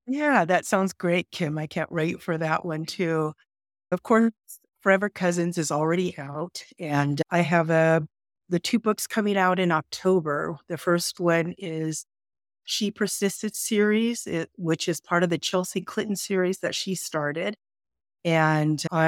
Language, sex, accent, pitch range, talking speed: English, female, American, 155-185 Hz, 150 wpm